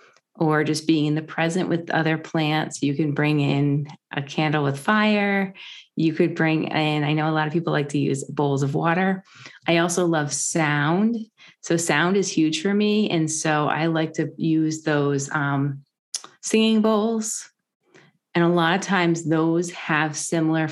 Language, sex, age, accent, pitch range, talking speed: English, female, 30-49, American, 150-190 Hz, 175 wpm